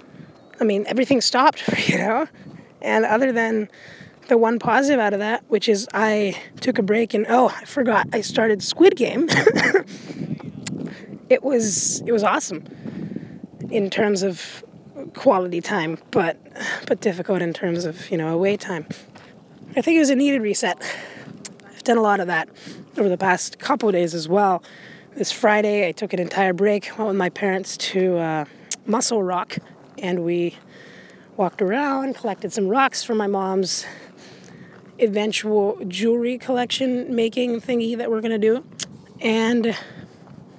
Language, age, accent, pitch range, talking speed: English, 20-39, American, 190-230 Hz, 155 wpm